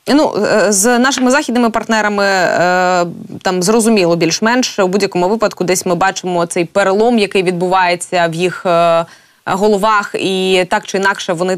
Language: Ukrainian